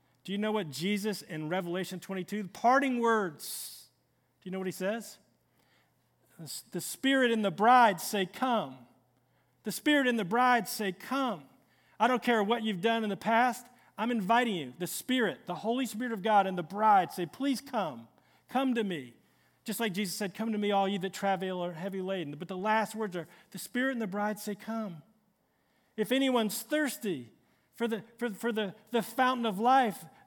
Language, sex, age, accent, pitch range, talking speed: English, male, 40-59, American, 185-235 Hz, 190 wpm